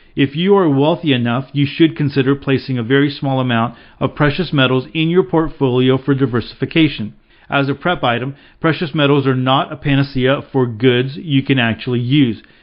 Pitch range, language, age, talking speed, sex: 125-150 Hz, English, 40-59, 175 wpm, male